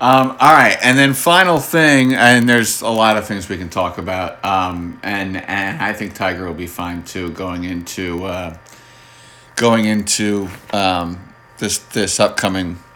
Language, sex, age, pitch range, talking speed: English, male, 40-59, 100-120 Hz, 165 wpm